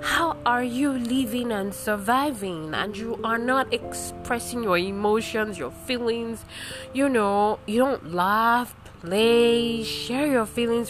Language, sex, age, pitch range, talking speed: English, female, 20-39, 195-275 Hz, 130 wpm